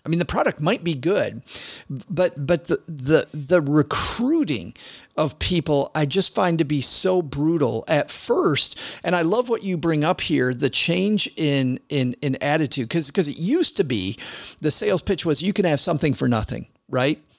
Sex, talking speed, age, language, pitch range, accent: male, 190 wpm, 40-59, English, 135-175 Hz, American